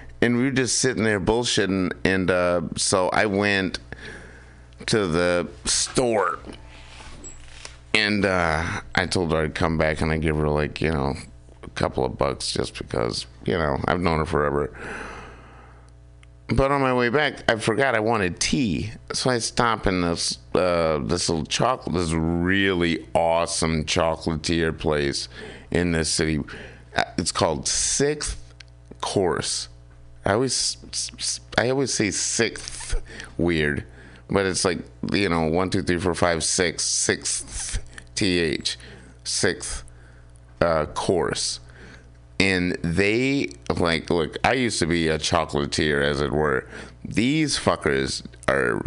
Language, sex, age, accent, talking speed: English, male, 50-69, American, 140 wpm